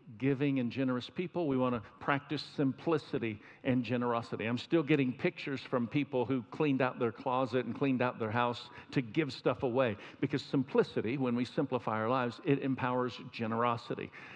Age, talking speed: 50-69, 170 wpm